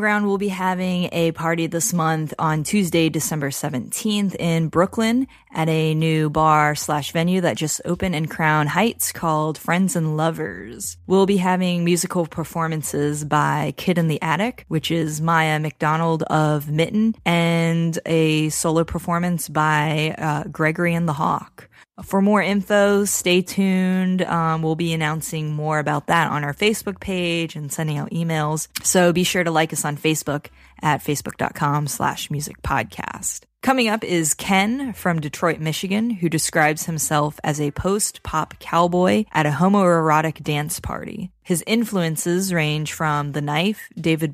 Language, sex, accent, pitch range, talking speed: English, female, American, 155-185 Hz, 155 wpm